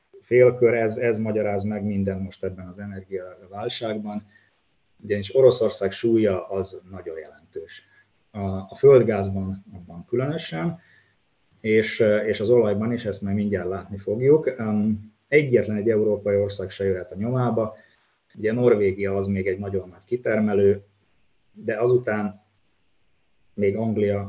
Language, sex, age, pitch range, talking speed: Hungarian, male, 30-49, 100-115 Hz, 135 wpm